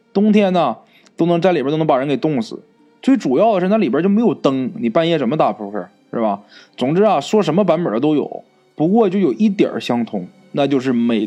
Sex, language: male, Chinese